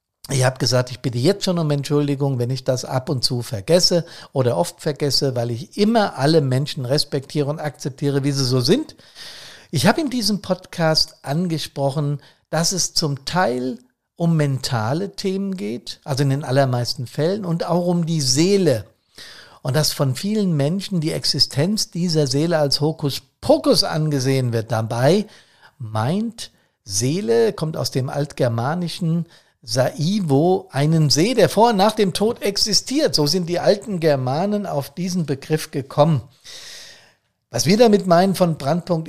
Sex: male